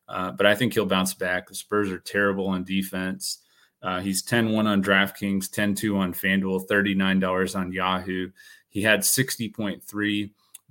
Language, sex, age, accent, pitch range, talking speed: English, male, 30-49, American, 95-105 Hz, 150 wpm